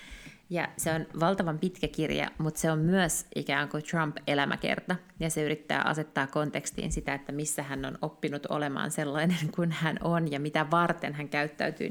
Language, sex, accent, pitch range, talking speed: Finnish, female, native, 145-170 Hz, 170 wpm